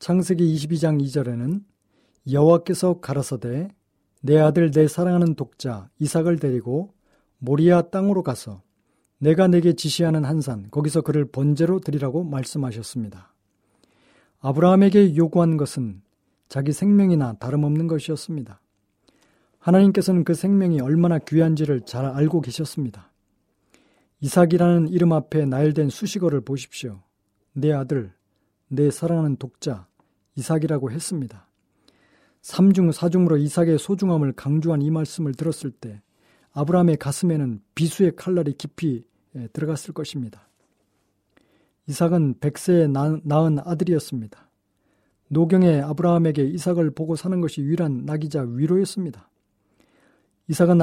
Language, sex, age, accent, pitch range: Korean, male, 40-59, native, 130-170 Hz